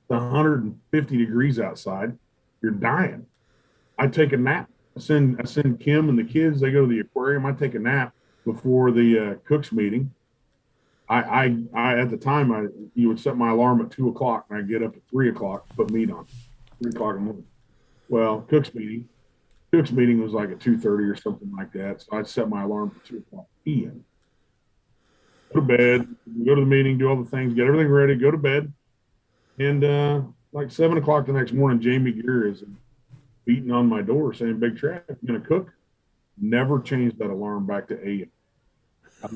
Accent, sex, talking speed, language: American, male, 195 wpm, English